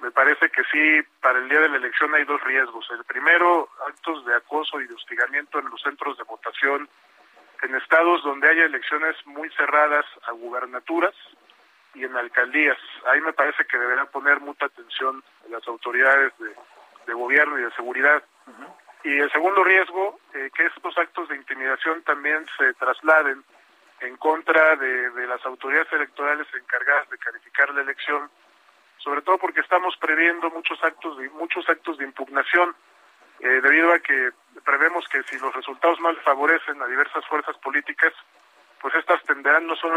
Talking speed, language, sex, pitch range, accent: 170 wpm, Spanish, male, 135-165 Hz, Mexican